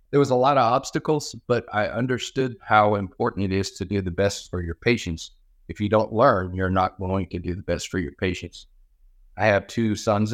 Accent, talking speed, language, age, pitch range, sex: American, 220 wpm, English, 50-69, 95-110 Hz, male